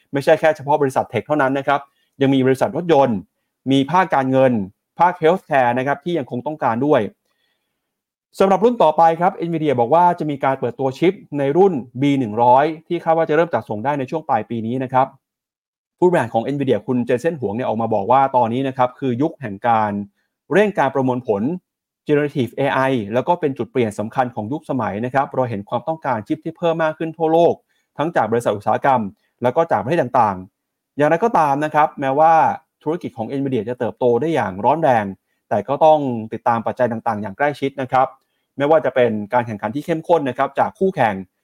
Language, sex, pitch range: Thai, male, 120-155 Hz